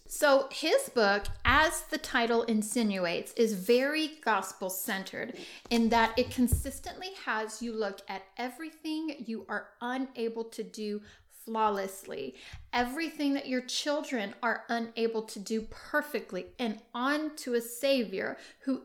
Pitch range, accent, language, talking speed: 220-270 Hz, American, English, 130 wpm